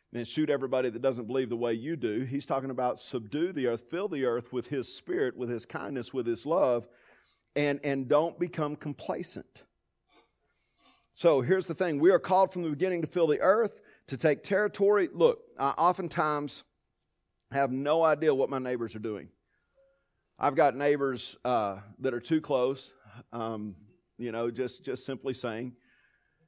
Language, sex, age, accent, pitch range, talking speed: English, male, 40-59, American, 120-155 Hz, 170 wpm